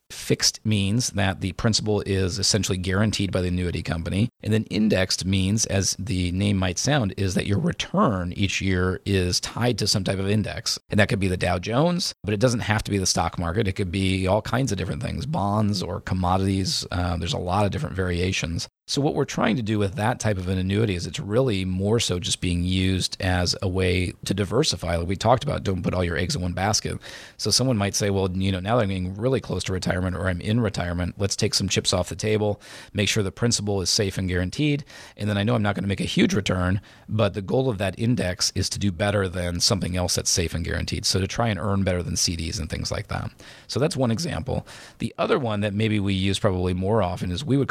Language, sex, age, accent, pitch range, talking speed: English, male, 40-59, American, 90-110 Hz, 250 wpm